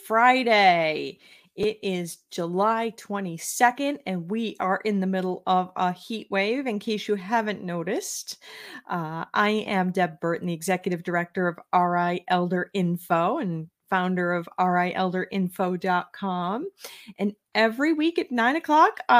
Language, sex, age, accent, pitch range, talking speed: English, female, 40-59, American, 180-220 Hz, 130 wpm